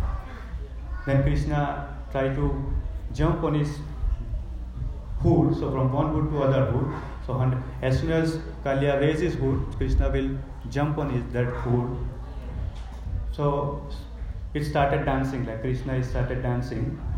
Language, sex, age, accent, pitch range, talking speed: English, male, 30-49, Indian, 120-145 Hz, 130 wpm